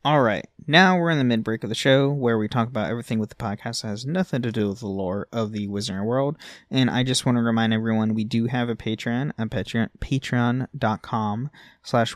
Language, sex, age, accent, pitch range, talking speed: English, male, 20-39, American, 110-140 Hz, 215 wpm